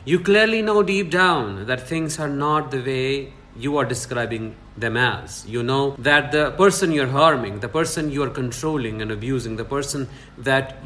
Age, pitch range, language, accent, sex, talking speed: 50-69, 125-165 Hz, English, Indian, male, 175 wpm